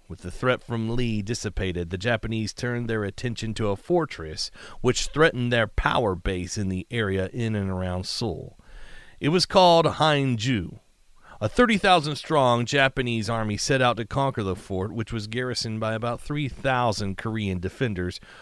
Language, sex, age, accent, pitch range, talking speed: English, male, 40-59, American, 100-135 Hz, 160 wpm